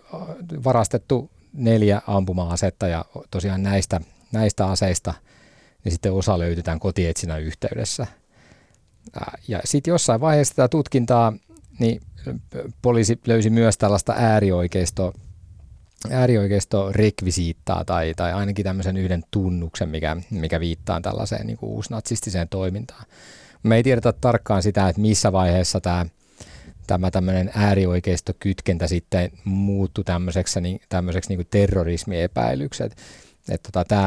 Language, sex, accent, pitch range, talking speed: Finnish, male, native, 90-110 Hz, 105 wpm